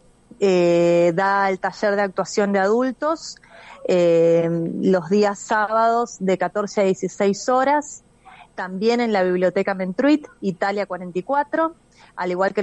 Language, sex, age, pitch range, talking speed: Spanish, female, 30-49, 195-240 Hz, 130 wpm